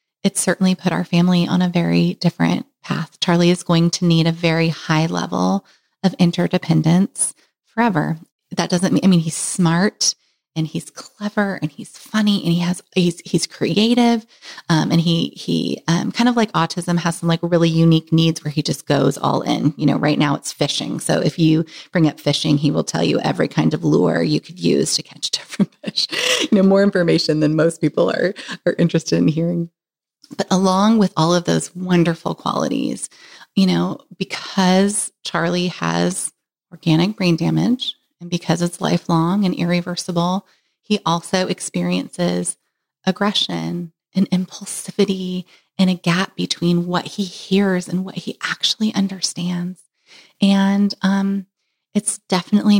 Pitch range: 165-195 Hz